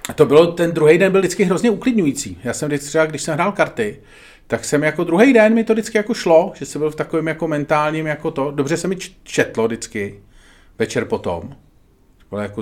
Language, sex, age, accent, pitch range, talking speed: Czech, male, 40-59, native, 115-155 Hz, 225 wpm